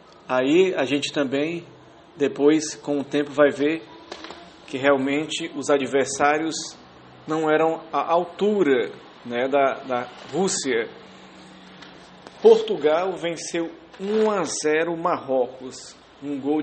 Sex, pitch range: male, 135-155 Hz